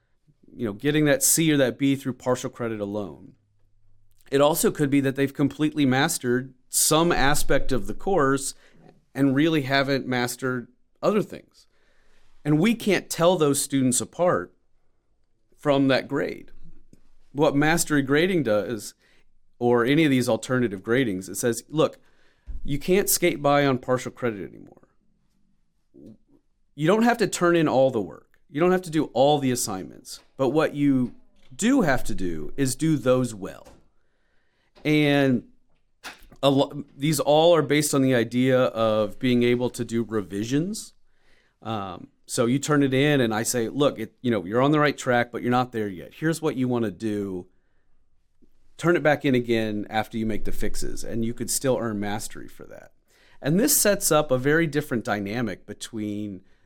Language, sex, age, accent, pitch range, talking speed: English, male, 40-59, American, 110-150 Hz, 170 wpm